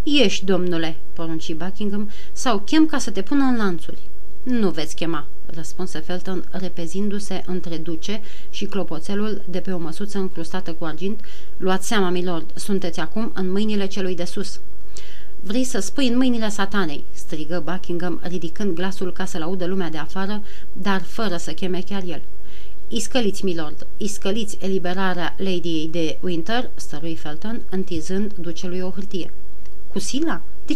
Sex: female